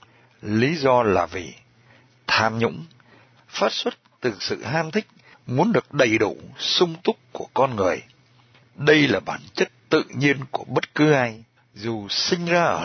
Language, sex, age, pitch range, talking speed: Vietnamese, male, 60-79, 115-140 Hz, 165 wpm